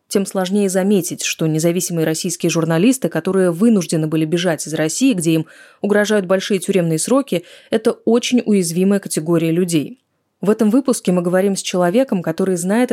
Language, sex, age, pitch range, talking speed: Russian, female, 20-39, 165-205 Hz, 155 wpm